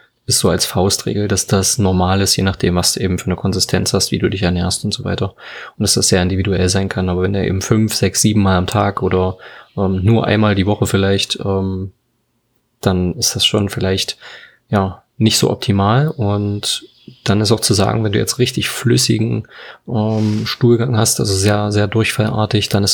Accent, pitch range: German, 100-115 Hz